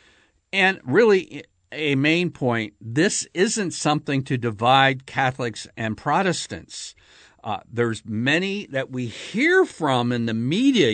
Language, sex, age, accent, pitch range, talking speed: English, male, 60-79, American, 105-145 Hz, 125 wpm